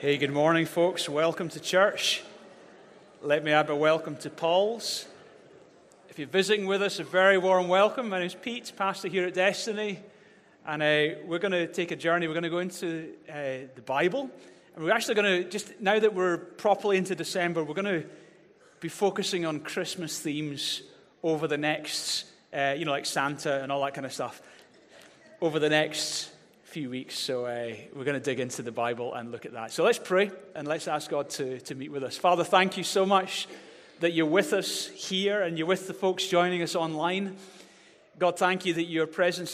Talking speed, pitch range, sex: 205 wpm, 150-185 Hz, male